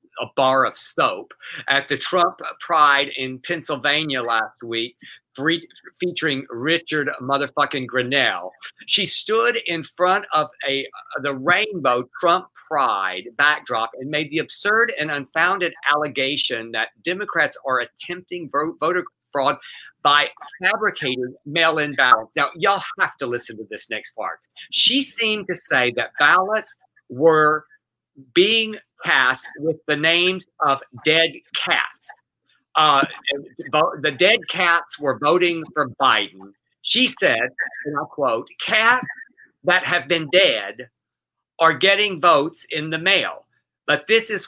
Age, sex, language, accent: 50-69, male, English, American